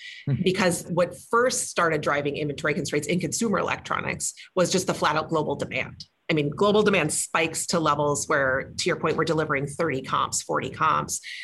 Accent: American